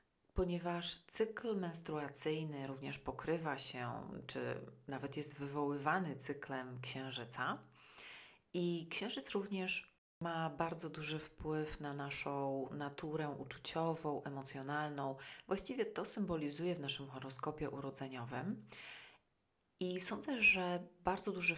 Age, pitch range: 30-49, 140-165 Hz